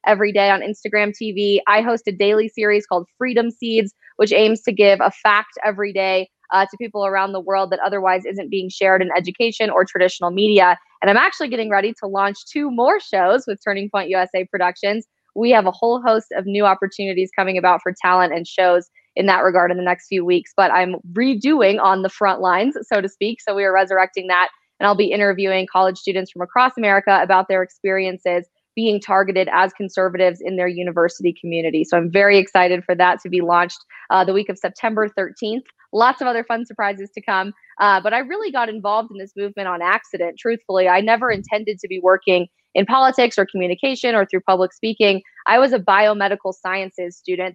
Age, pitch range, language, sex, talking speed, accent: 20-39, 185-210 Hz, English, female, 205 wpm, American